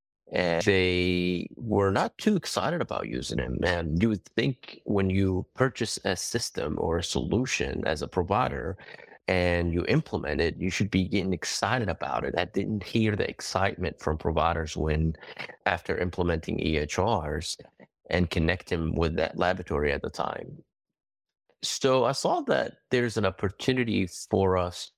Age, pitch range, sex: 30-49, 85-100 Hz, male